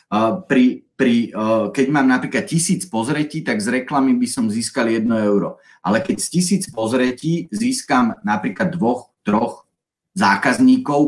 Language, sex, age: Slovak, male, 30-49